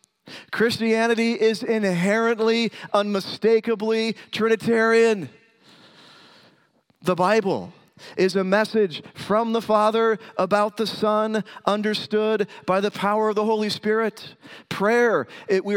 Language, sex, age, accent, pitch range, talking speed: English, male, 40-59, American, 190-225 Hz, 100 wpm